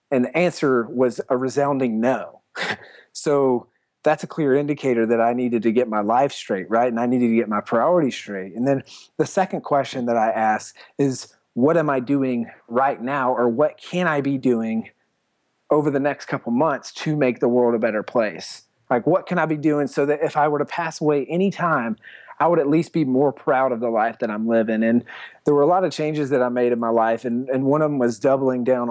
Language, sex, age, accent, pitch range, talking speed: English, male, 30-49, American, 120-145 Hz, 230 wpm